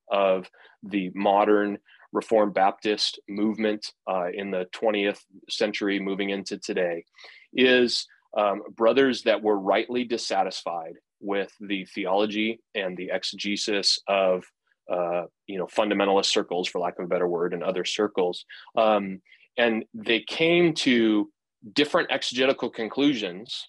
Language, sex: English, male